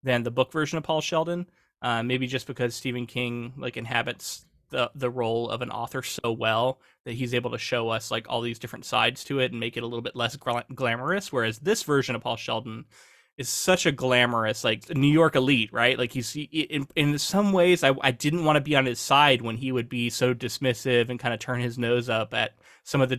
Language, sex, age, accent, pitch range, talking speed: English, male, 20-39, American, 120-145 Hz, 245 wpm